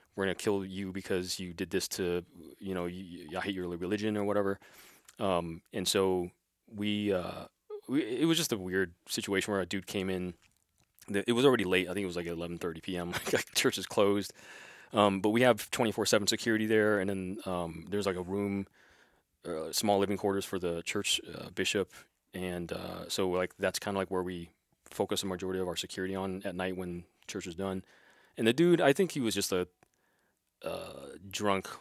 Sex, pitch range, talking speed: male, 90-105 Hz, 205 wpm